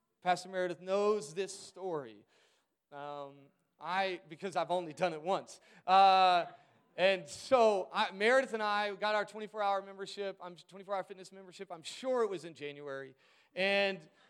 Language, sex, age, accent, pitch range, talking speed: English, male, 30-49, American, 190-255 Hz, 150 wpm